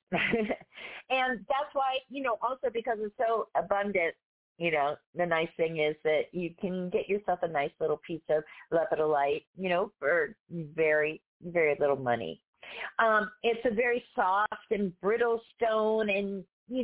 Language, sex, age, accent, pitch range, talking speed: English, female, 40-59, American, 160-220 Hz, 155 wpm